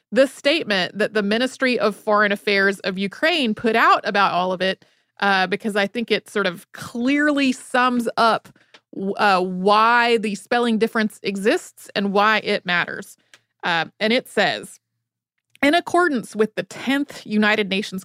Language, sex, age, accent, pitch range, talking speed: English, female, 30-49, American, 195-245 Hz, 155 wpm